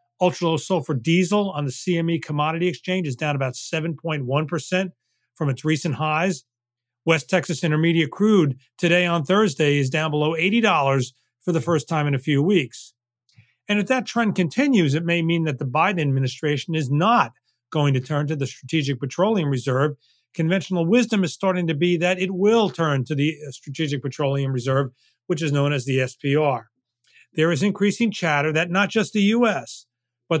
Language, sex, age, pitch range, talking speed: English, male, 40-59, 140-180 Hz, 175 wpm